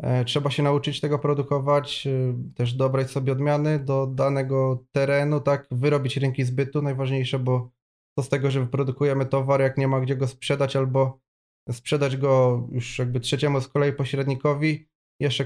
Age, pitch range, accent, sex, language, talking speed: 20-39, 130-150 Hz, native, male, Polish, 155 wpm